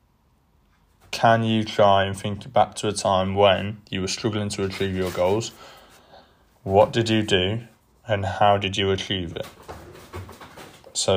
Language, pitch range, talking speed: English, 95-115 Hz, 150 wpm